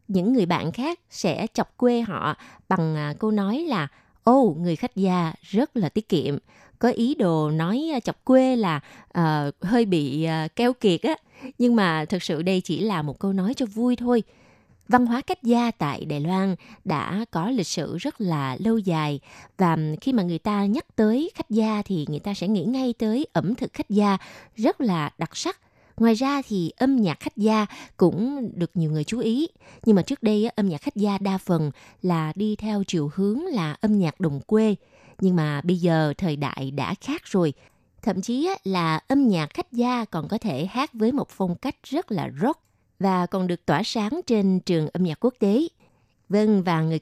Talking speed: 200 wpm